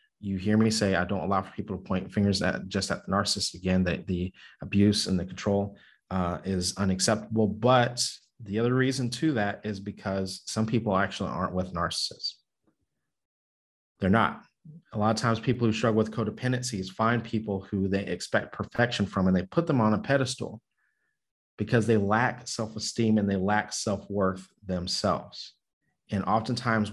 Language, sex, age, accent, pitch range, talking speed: English, male, 30-49, American, 95-115 Hz, 175 wpm